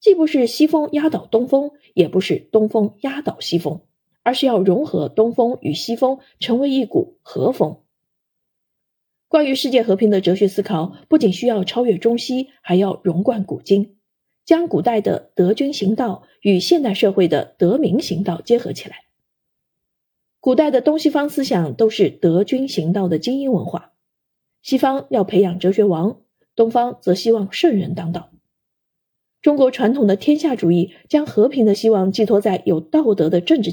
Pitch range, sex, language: 185-255 Hz, female, Chinese